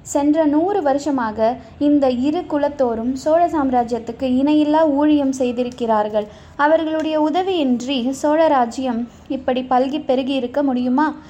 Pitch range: 255-305 Hz